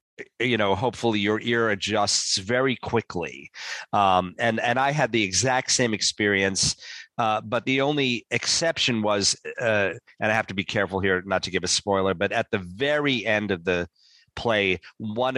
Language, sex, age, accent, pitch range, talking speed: English, male, 40-59, American, 95-115 Hz, 175 wpm